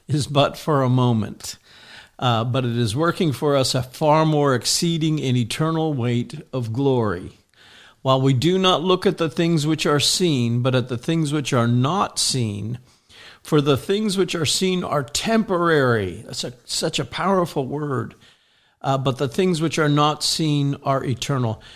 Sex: male